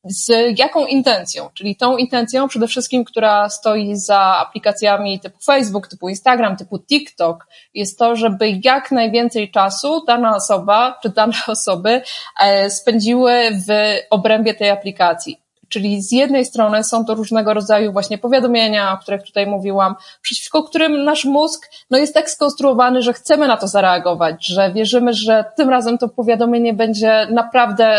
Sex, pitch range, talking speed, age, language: female, 195-235 Hz, 150 wpm, 20-39, Polish